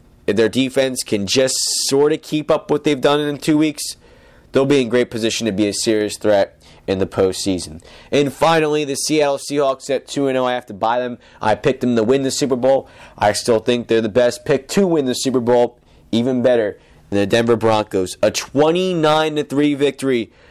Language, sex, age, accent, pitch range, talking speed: English, male, 30-49, American, 110-135 Hz, 200 wpm